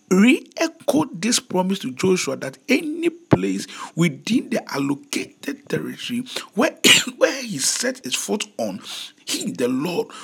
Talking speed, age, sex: 130 wpm, 50-69, male